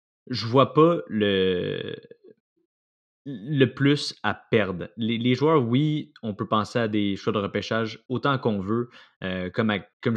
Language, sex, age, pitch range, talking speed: French, male, 20-39, 100-120 Hz, 160 wpm